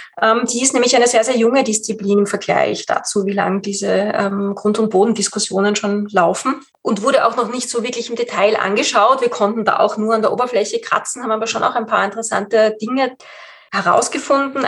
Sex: female